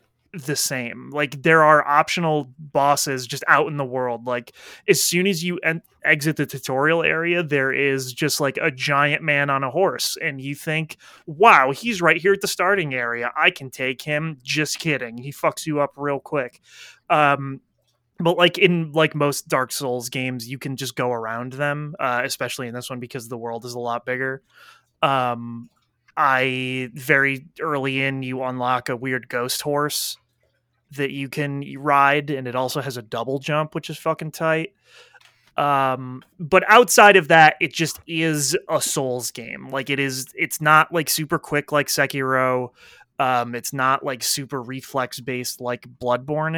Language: English